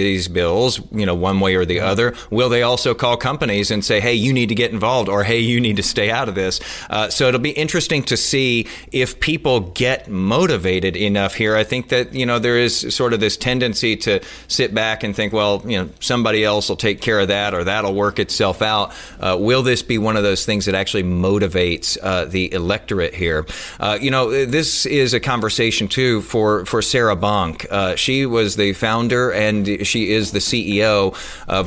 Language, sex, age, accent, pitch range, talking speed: English, male, 40-59, American, 100-120 Hz, 215 wpm